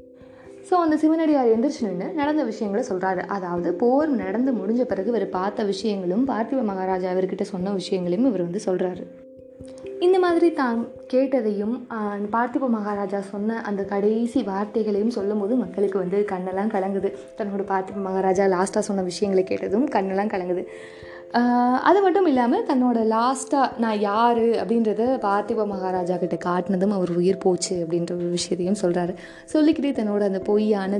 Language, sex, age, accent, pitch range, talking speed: Tamil, female, 20-39, native, 190-255 Hz, 135 wpm